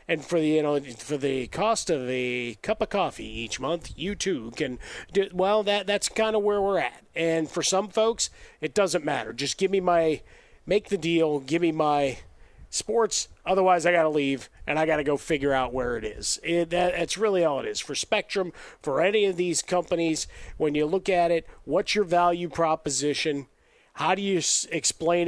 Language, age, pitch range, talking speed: English, 40-59, 145-180 Hz, 195 wpm